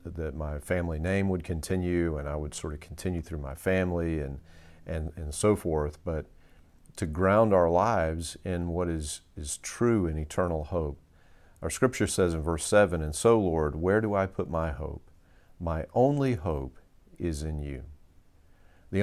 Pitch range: 80-95 Hz